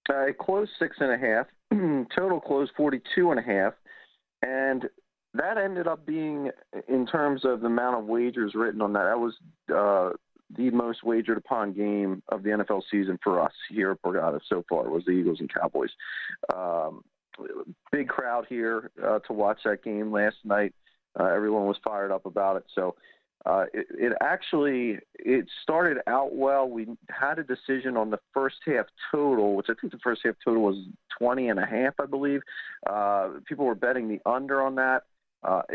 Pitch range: 105-135 Hz